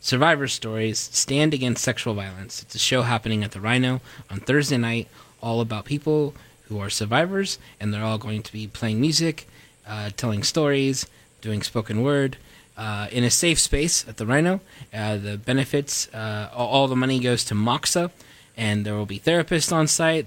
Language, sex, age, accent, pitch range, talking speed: English, male, 20-39, American, 110-140 Hz, 180 wpm